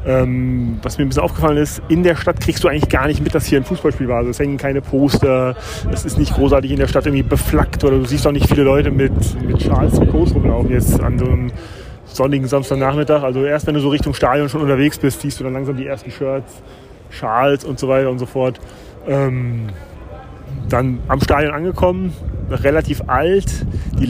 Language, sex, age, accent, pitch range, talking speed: German, male, 30-49, German, 125-150 Hz, 210 wpm